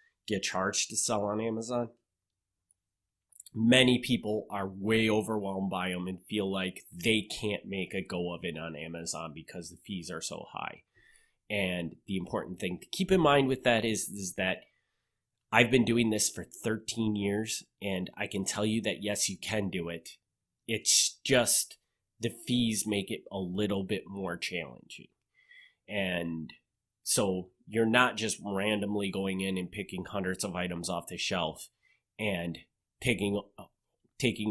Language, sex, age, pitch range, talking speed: English, male, 30-49, 100-115 Hz, 160 wpm